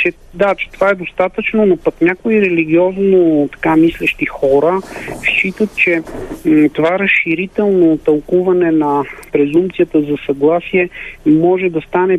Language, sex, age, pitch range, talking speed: Bulgarian, male, 40-59, 145-185 Hz, 130 wpm